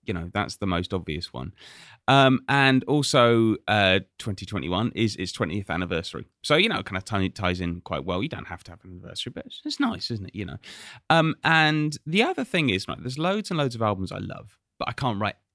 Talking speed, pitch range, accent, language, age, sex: 230 wpm, 105-150 Hz, British, English, 30-49, male